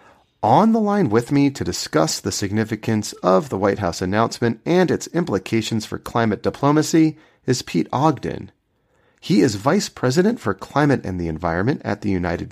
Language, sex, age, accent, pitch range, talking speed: English, male, 30-49, American, 105-160 Hz, 170 wpm